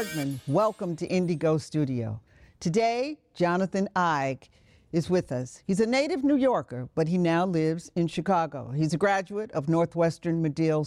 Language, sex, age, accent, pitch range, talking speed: English, female, 50-69, American, 155-210 Hz, 150 wpm